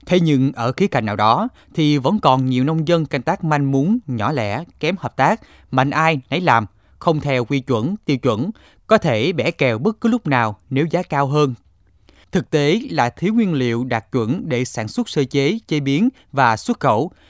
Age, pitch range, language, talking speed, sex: 20-39, 120-175 Hz, Vietnamese, 215 wpm, male